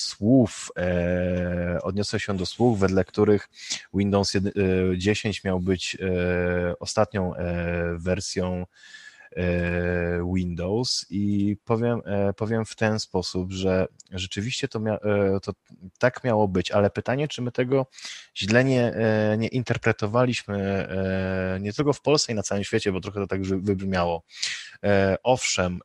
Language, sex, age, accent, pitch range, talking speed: Polish, male, 20-39, native, 90-110 Hz, 145 wpm